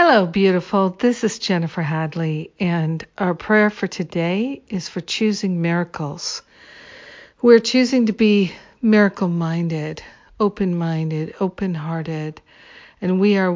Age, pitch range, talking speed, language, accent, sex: 50-69, 170-205 Hz, 110 wpm, English, American, female